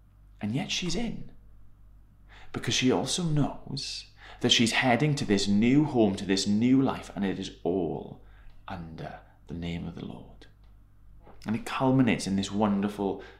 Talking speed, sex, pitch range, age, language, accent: 155 wpm, male, 100-115 Hz, 20-39, English, British